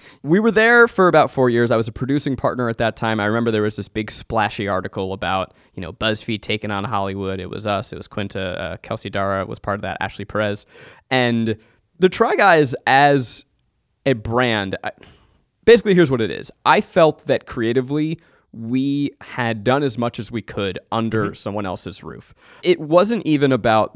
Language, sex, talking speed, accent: English, male, 195 wpm, American